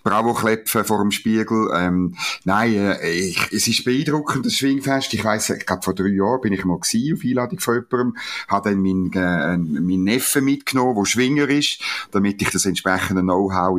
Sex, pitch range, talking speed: male, 95-130 Hz, 175 wpm